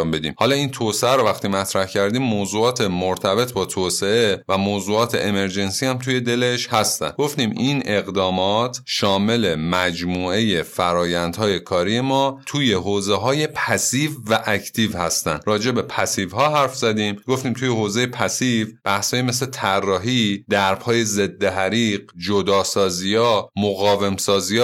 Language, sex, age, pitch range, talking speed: Persian, male, 30-49, 100-130 Hz, 125 wpm